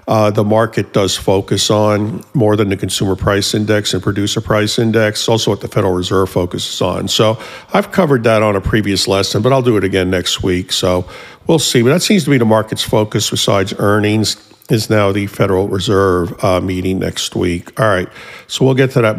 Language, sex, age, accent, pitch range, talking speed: English, male, 50-69, American, 100-120 Hz, 210 wpm